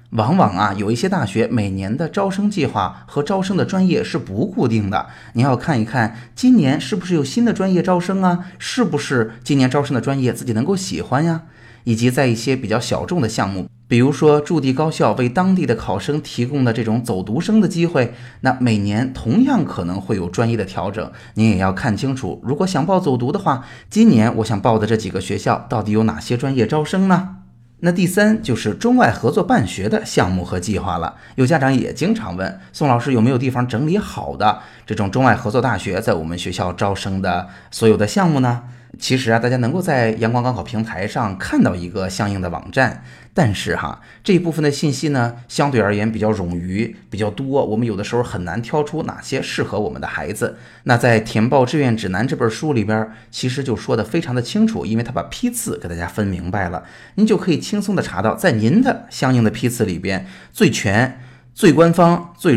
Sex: male